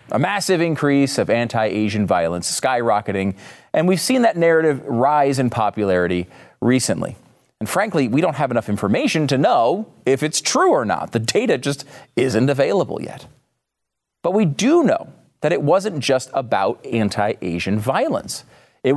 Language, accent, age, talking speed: English, American, 40-59, 150 wpm